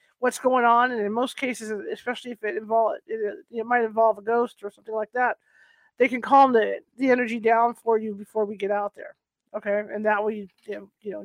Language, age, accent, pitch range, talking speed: English, 40-59, American, 225-275 Hz, 225 wpm